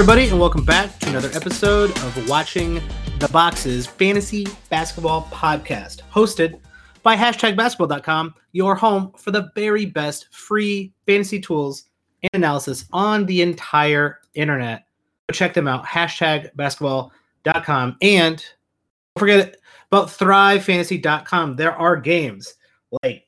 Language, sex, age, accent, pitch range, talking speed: English, male, 30-49, American, 140-185 Hz, 125 wpm